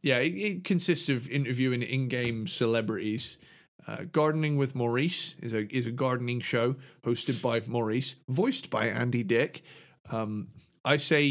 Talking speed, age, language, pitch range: 150 wpm, 30-49, English, 115-140 Hz